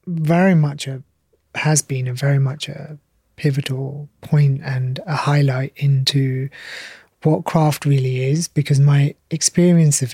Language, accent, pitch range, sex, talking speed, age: English, British, 140-165 Hz, male, 135 wpm, 30-49